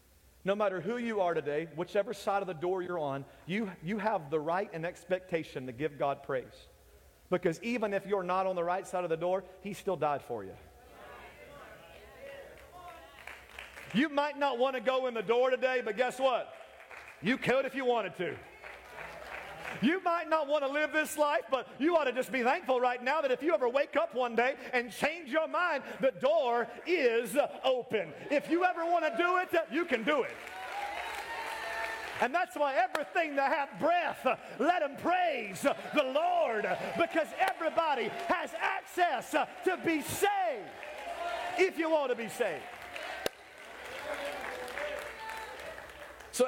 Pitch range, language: 200-320 Hz, English